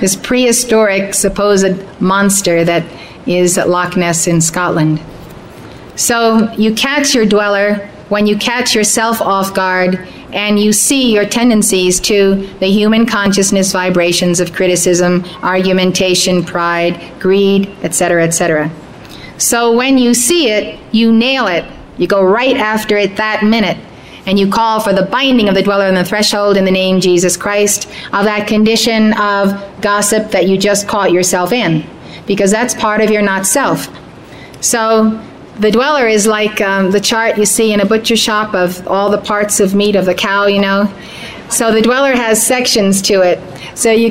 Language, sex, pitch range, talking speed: English, female, 185-220 Hz, 165 wpm